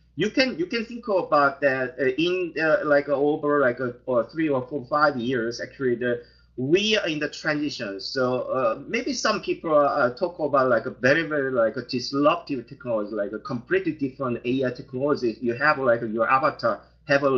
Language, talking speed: English, 195 wpm